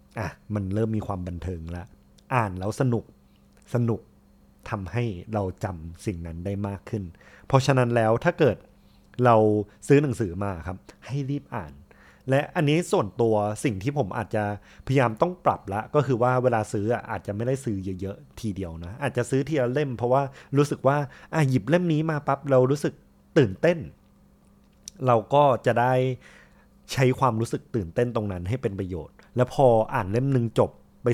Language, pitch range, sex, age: Thai, 100-130 Hz, male, 30-49